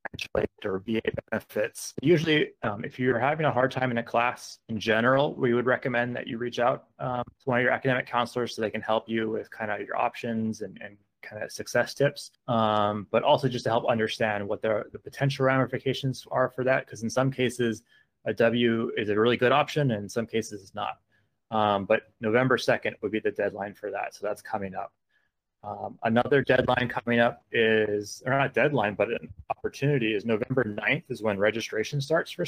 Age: 20-39